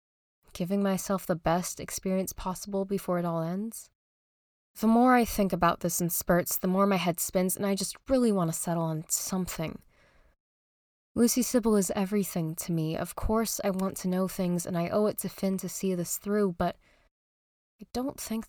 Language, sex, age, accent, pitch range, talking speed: English, female, 20-39, American, 170-205 Hz, 190 wpm